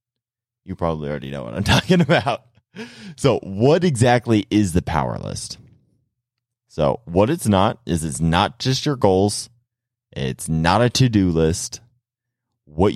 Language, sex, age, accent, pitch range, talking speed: English, male, 30-49, American, 90-120 Hz, 145 wpm